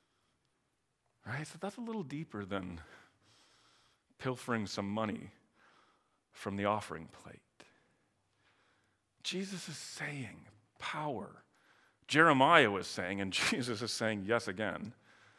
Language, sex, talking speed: English, male, 110 wpm